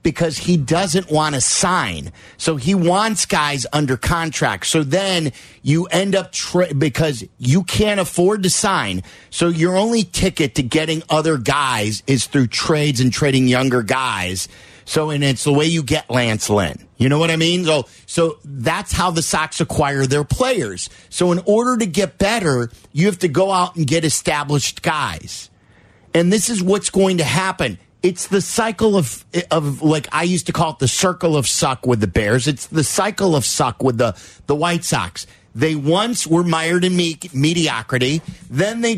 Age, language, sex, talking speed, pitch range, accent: 50-69, English, male, 185 wpm, 135-180 Hz, American